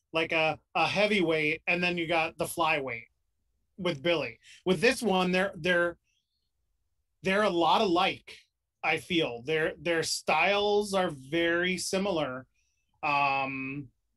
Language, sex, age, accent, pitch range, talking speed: English, male, 30-49, American, 150-185 Hz, 125 wpm